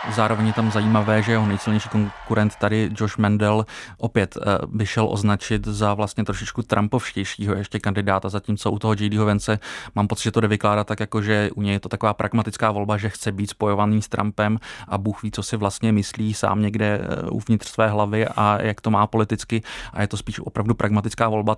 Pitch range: 105-110 Hz